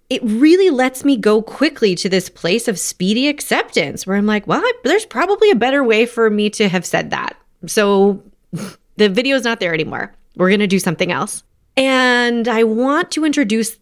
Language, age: English, 30-49